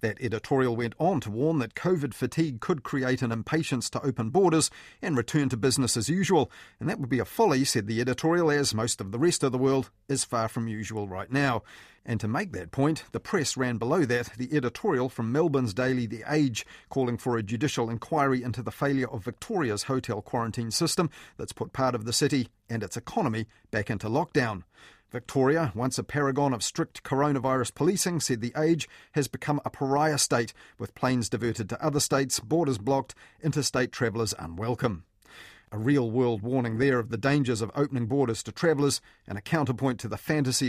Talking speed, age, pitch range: 195 wpm, 40-59, 115-140 Hz